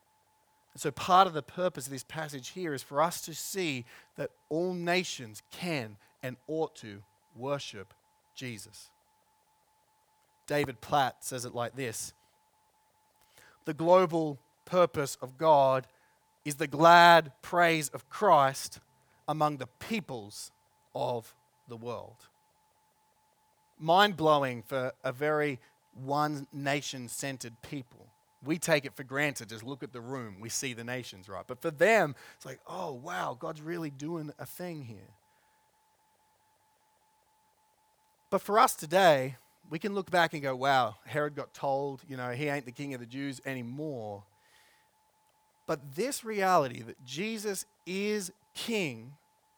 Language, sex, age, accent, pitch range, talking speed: English, male, 30-49, Australian, 130-190 Hz, 135 wpm